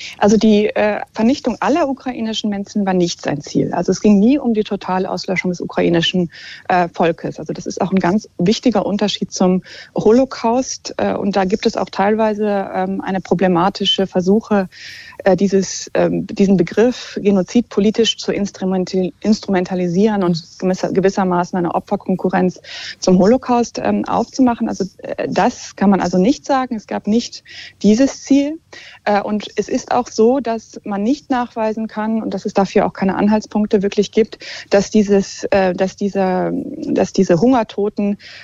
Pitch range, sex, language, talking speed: 185-220 Hz, female, German, 140 wpm